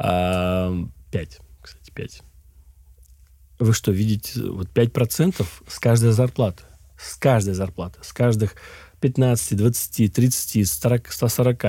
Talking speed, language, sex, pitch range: 100 wpm, Russian, male, 95-130 Hz